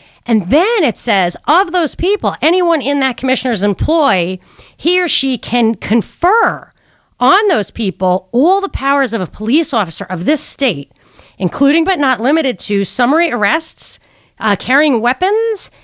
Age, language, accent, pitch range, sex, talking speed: 40-59, English, American, 215-300 Hz, female, 150 wpm